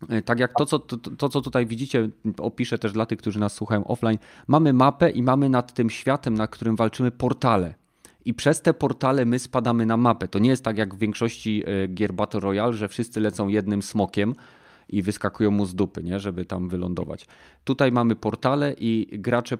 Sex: male